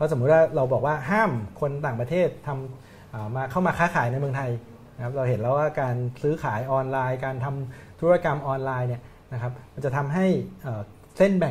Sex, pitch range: male, 125-160 Hz